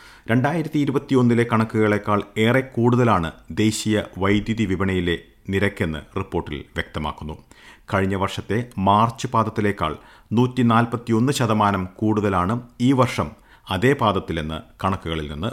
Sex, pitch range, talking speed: male, 95-120 Hz, 85 wpm